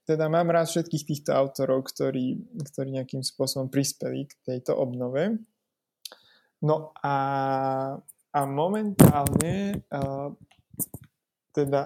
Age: 20-39